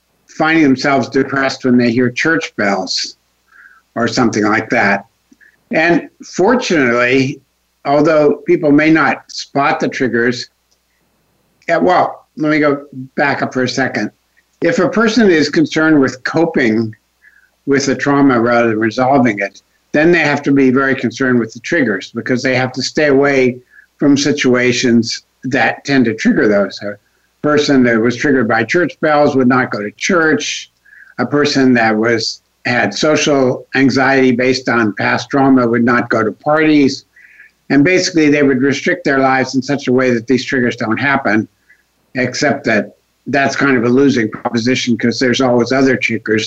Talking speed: 160 wpm